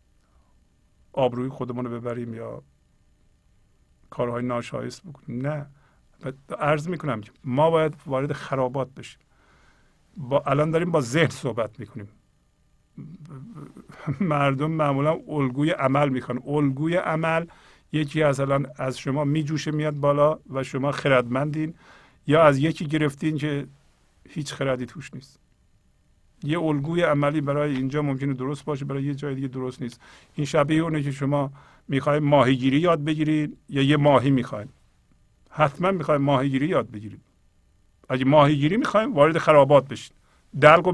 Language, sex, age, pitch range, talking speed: Persian, male, 50-69, 130-160 Hz, 130 wpm